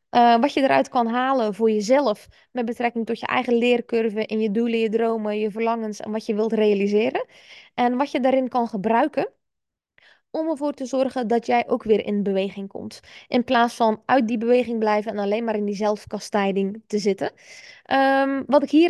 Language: Dutch